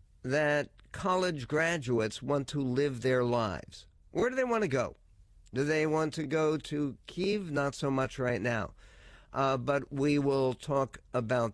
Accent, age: American, 50-69